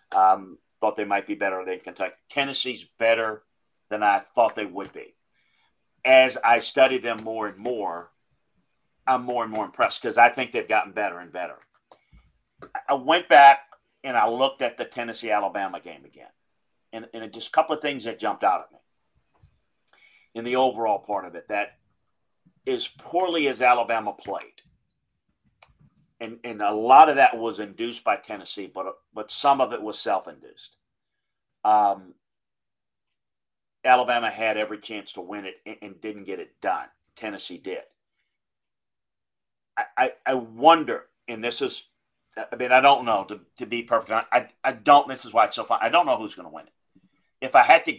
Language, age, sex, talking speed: English, 40-59, male, 180 wpm